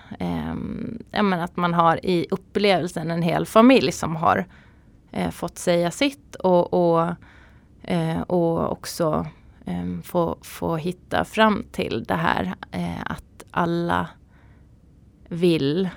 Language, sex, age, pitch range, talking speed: Swedish, female, 20-39, 155-180 Hz, 130 wpm